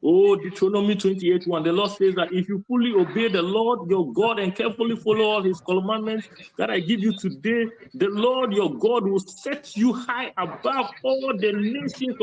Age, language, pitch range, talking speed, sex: 50-69, English, 195-260 Hz, 185 wpm, male